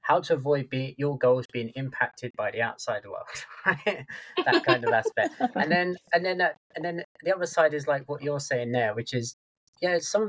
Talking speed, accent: 210 wpm, British